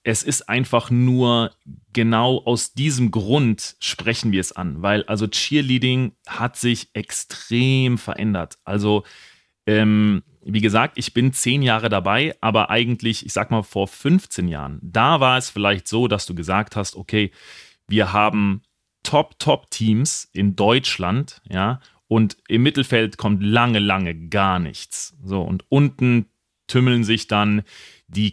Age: 30-49